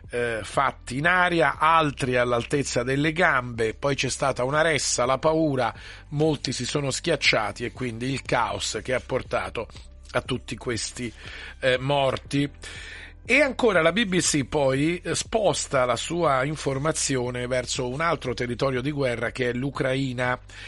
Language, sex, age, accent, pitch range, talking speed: Italian, male, 40-59, native, 125-155 Hz, 135 wpm